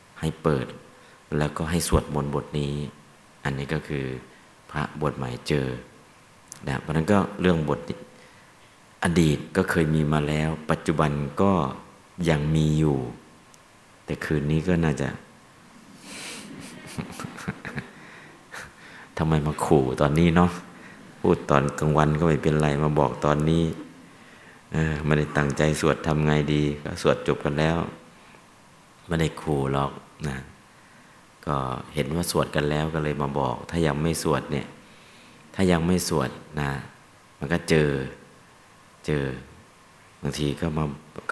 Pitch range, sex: 70-80 Hz, male